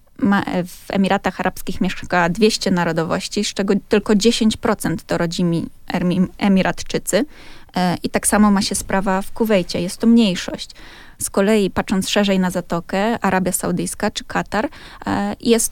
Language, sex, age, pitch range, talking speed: Polish, female, 20-39, 185-220 Hz, 135 wpm